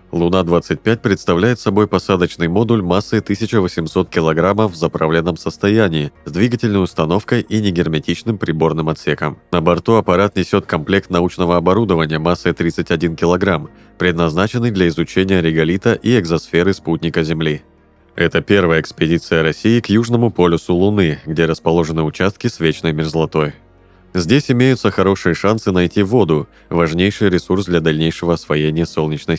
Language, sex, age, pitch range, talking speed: Russian, male, 30-49, 80-100 Hz, 125 wpm